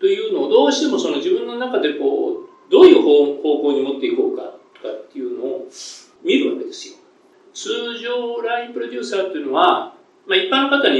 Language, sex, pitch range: Japanese, male, 345-395 Hz